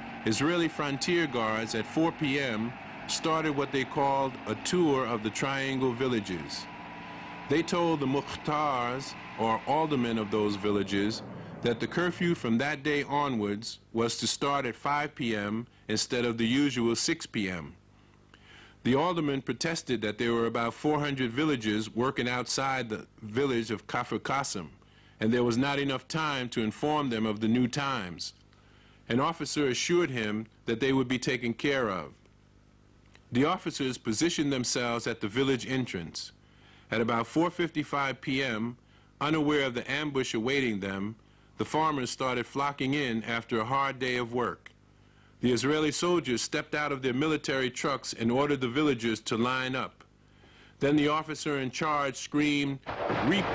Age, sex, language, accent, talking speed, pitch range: 50-69, male, English, American, 150 wpm, 110-145 Hz